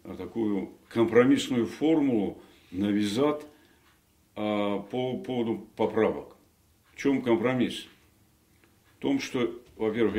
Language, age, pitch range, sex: Russian, 50-69, 100-115 Hz, male